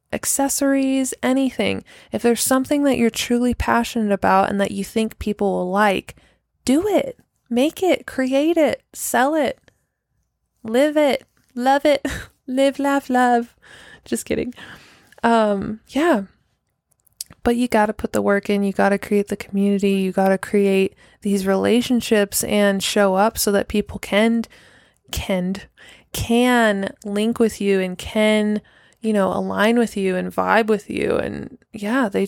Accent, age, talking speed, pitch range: American, 20-39, 150 wpm, 195-240 Hz